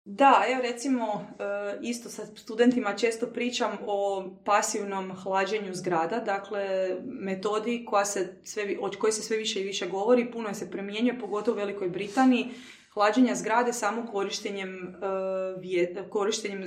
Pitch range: 195-240 Hz